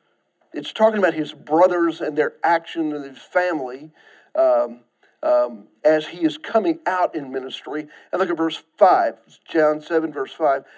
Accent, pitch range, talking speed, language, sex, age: American, 160-240 Hz, 160 wpm, English, male, 50-69